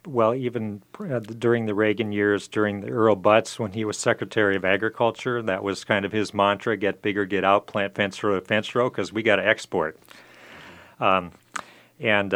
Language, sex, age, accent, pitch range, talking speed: English, male, 40-59, American, 95-115 Hz, 190 wpm